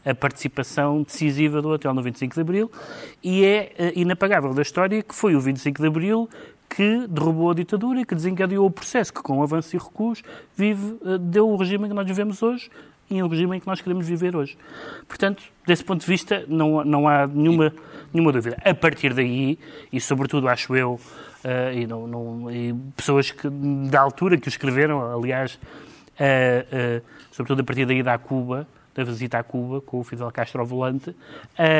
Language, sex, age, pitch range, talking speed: Portuguese, male, 30-49, 130-175 Hz, 190 wpm